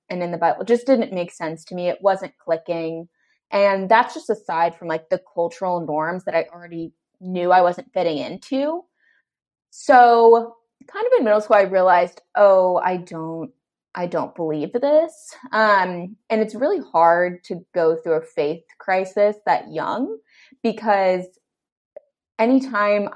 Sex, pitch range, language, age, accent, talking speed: female, 175-220 Hz, English, 20-39, American, 155 wpm